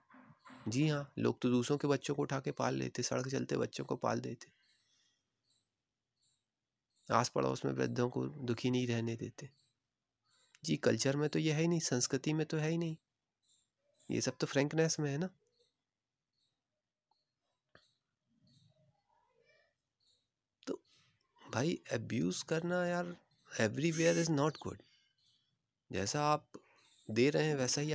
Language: Hindi